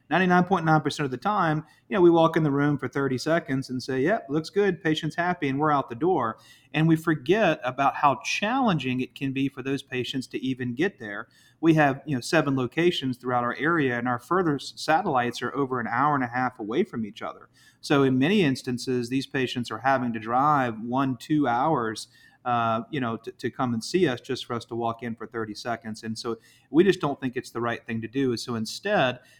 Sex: male